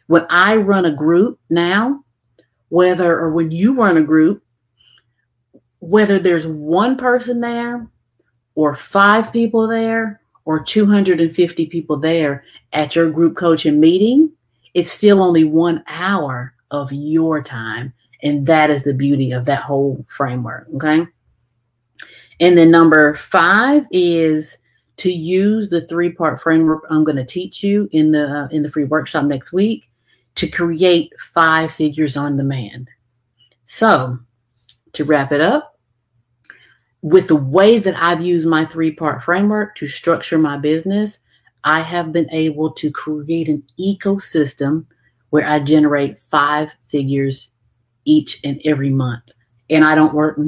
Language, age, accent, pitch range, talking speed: English, 30-49, American, 140-175 Hz, 140 wpm